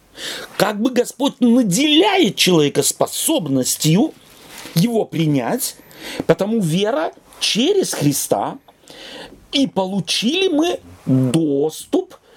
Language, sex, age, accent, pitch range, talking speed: Russian, male, 40-59, native, 165-265 Hz, 80 wpm